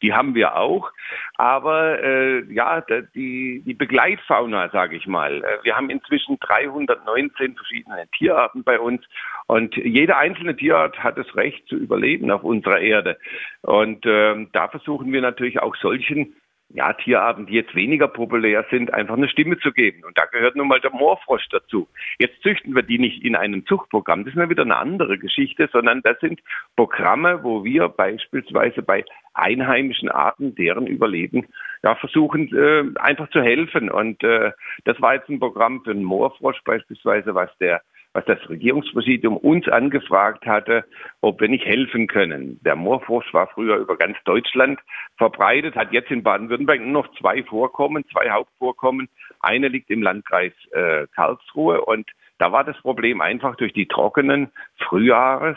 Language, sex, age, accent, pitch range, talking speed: German, male, 50-69, German, 115-155 Hz, 165 wpm